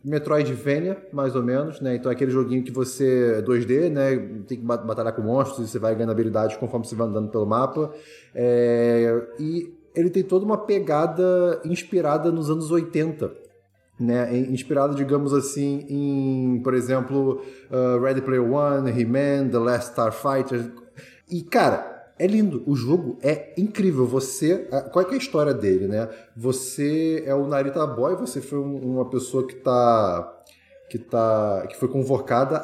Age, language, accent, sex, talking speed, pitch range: 20-39, Portuguese, Brazilian, male, 160 wpm, 120-150 Hz